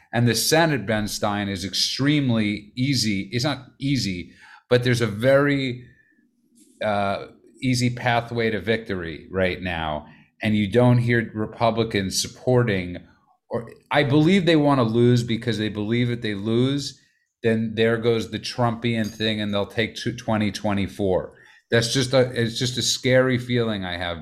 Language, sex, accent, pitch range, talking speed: English, male, American, 105-125 Hz, 155 wpm